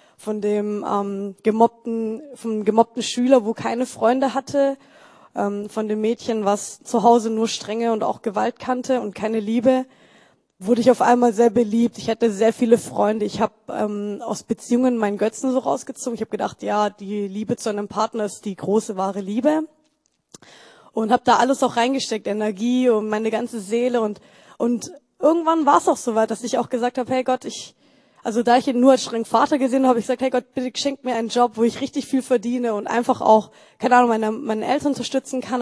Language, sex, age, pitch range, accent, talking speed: German, female, 20-39, 225-265 Hz, German, 205 wpm